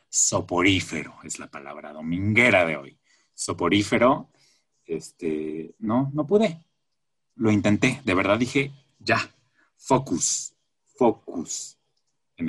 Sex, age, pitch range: male, 30-49, 95-140 Hz